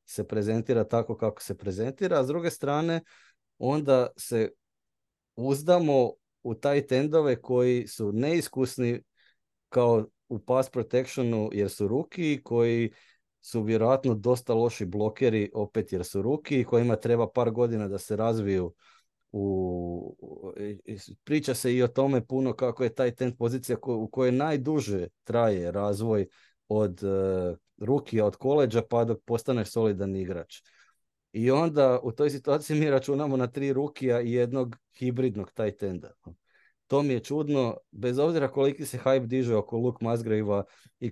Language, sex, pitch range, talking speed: Croatian, male, 105-130 Hz, 145 wpm